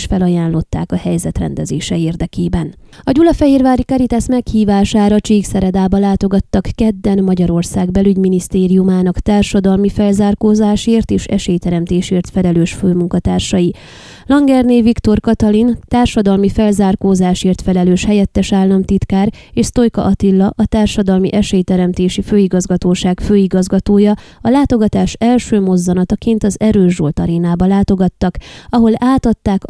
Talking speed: 95 wpm